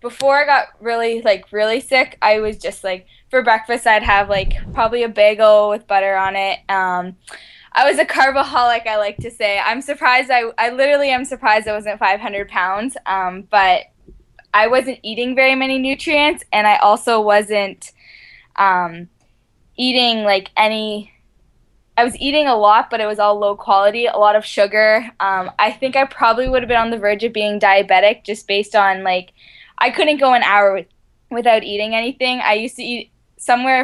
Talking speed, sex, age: 190 wpm, female, 10-29